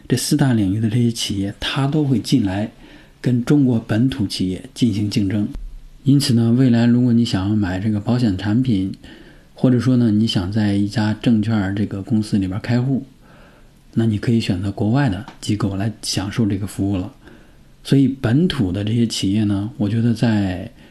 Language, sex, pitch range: Chinese, male, 105-125 Hz